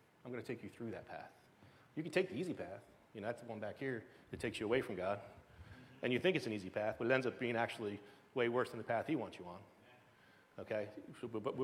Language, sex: English, male